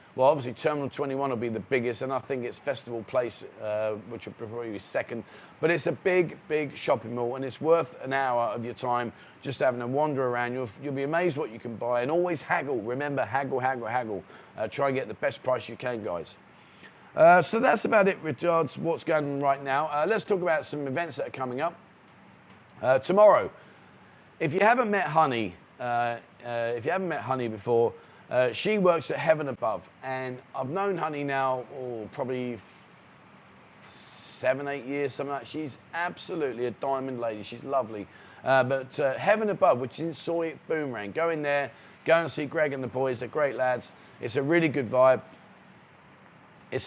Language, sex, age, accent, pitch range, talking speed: English, male, 30-49, British, 125-160 Hz, 200 wpm